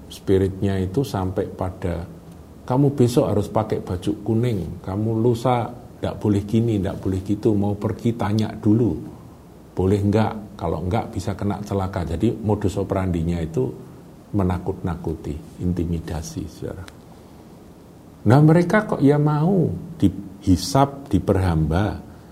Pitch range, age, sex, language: 85-120 Hz, 50-69, male, Indonesian